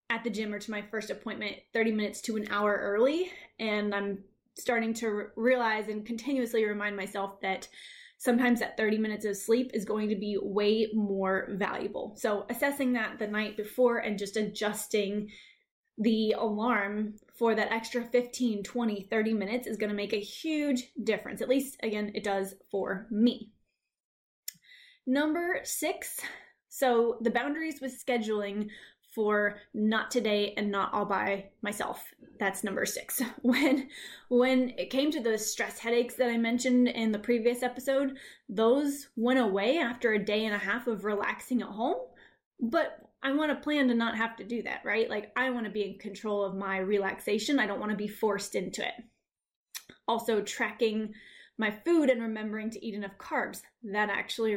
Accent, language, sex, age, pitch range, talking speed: American, English, female, 20-39, 210-250 Hz, 170 wpm